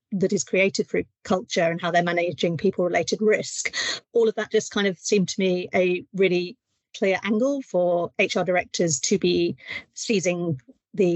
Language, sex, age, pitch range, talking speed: English, female, 40-59, 180-215 Hz, 165 wpm